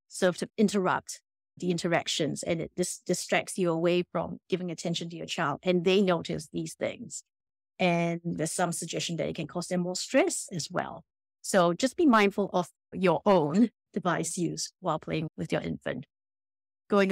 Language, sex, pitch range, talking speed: English, female, 170-205 Hz, 175 wpm